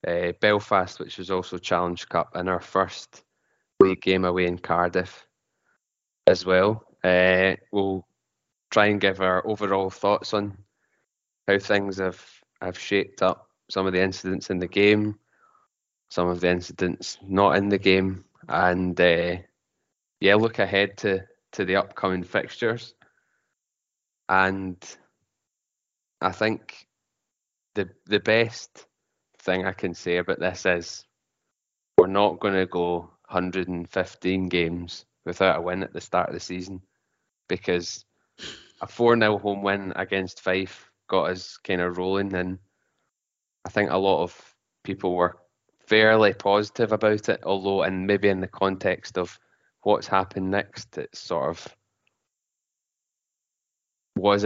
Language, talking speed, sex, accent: English, 140 wpm, male, British